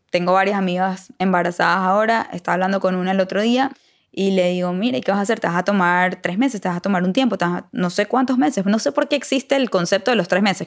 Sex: female